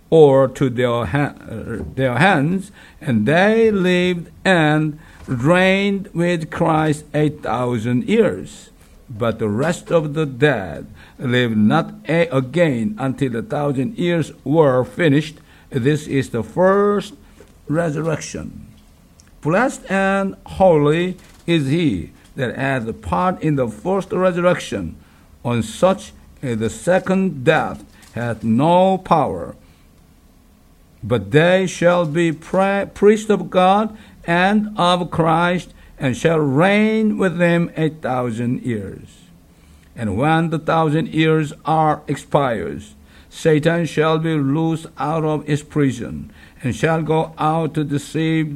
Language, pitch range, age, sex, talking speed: English, 125-170 Hz, 60-79, male, 115 wpm